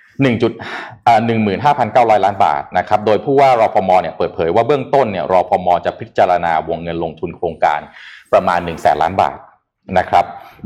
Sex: male